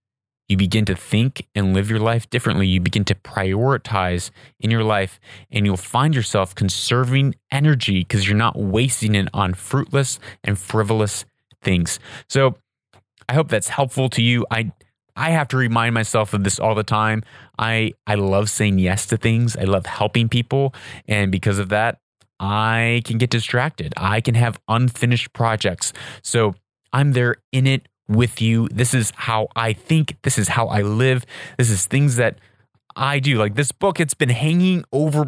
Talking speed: 175 wpm